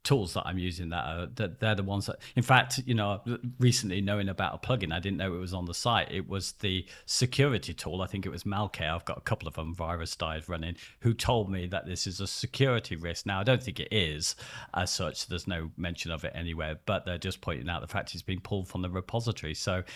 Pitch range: 85-110 Hz